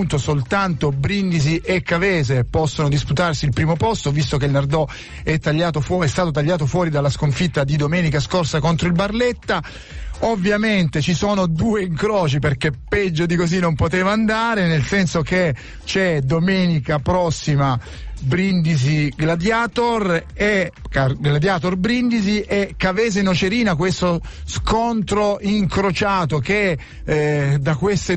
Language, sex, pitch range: Italian, male, 150-195 Hz